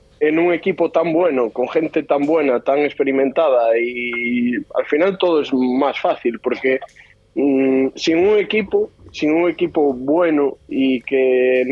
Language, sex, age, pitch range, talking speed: Spanish, male, 20-39, 135-170 Hz, 155 wpm